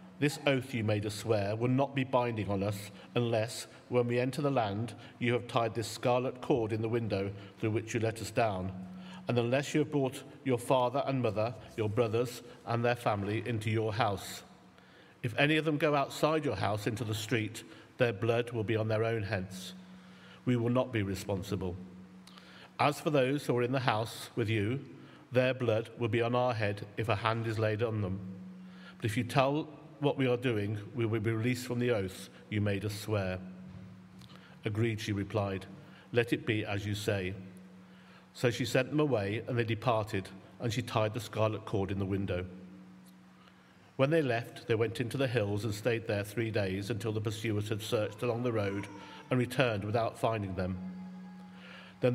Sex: male